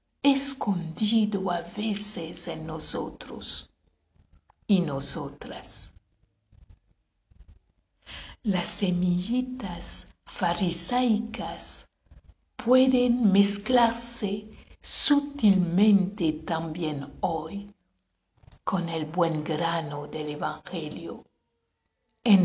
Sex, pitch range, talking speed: female, 145-205 Hz, 60 wpm